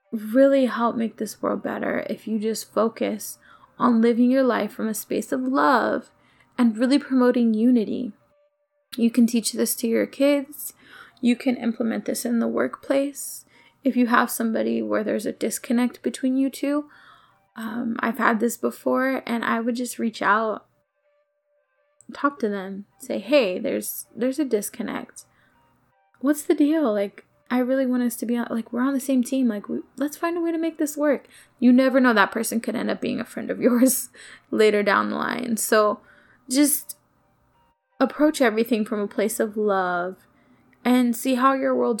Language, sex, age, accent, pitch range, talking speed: English, female, 20-39, American, 220-265 Hz, 175 wpm